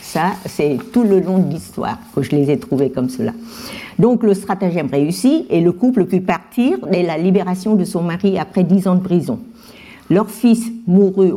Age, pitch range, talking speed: 60-79, 165-215 Hz, 195 wpm